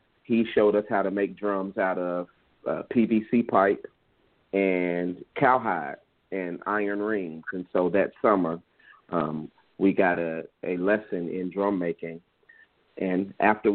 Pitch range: 90-100 Hz